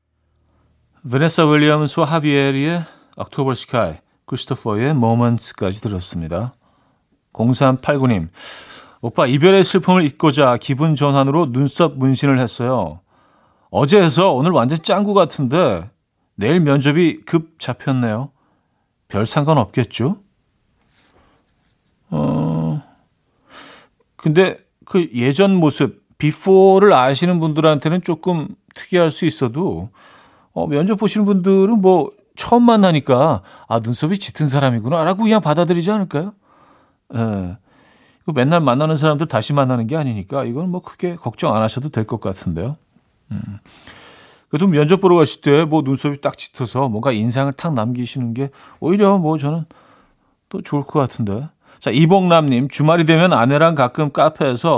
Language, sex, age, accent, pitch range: Korean, male, 40-59, native, 120-165 Hz